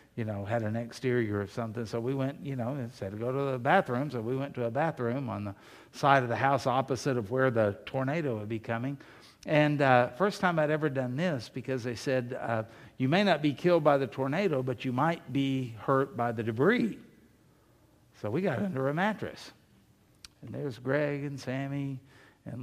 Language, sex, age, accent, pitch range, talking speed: English, male, 60-79, American, 125-150 Hz, 205 wpm